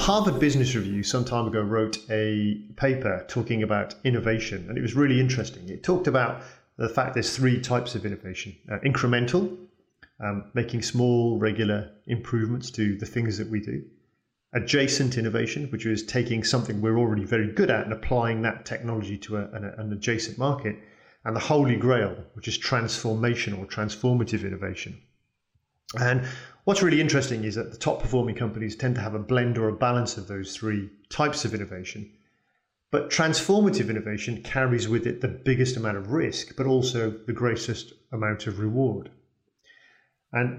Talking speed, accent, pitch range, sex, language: 170 wpm, British, 105-125 Hz, male, English